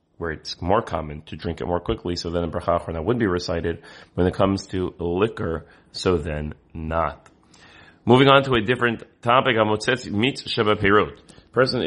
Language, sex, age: English, male, 30-49